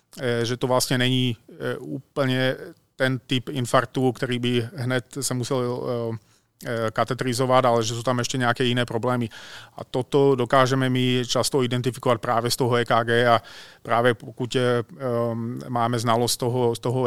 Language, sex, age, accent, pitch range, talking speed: Czech, male, 30-49, native, 115-130 Hz, 145 wpm